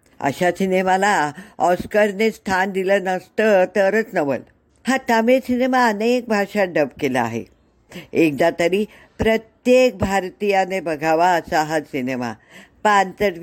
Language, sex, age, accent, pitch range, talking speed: Marathi, female, 60-79, native, 160-225 Hz, 105 wpm